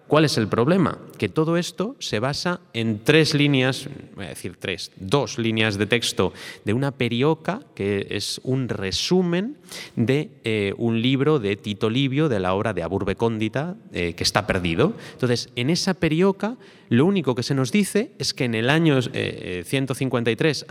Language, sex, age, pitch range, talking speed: Spanish, male, 30-49, 105-155 Hz, 170 wpm